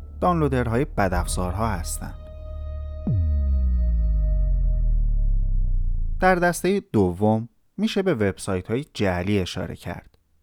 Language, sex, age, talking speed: Persian, male, 30-49, 80 wpm